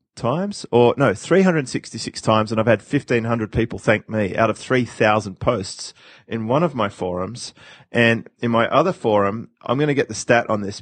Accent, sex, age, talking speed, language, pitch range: Australian, male, 30-49, 185 wpm, English, 105-120 Hz